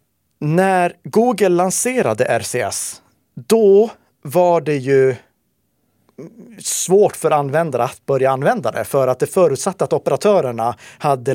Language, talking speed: Swedish, 115 wpm